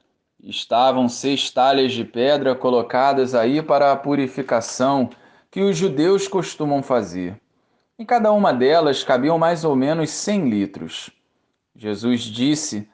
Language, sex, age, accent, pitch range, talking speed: Portuguese, male, 20-39, Brazilian, 110-160 Hz, 125 wpm